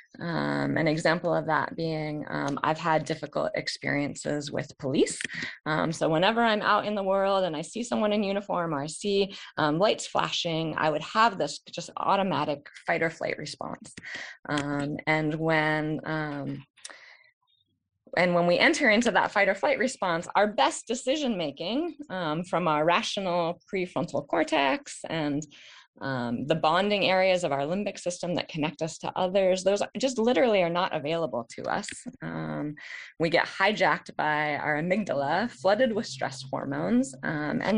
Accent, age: American, 20-39